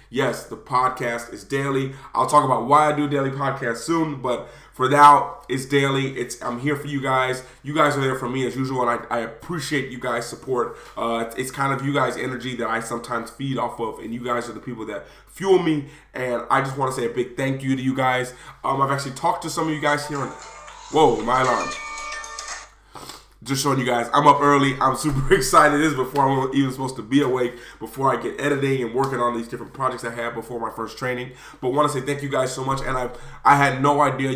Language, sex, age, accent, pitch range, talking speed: English, male, 20-39, American, 125-140 Hz, 245 wpm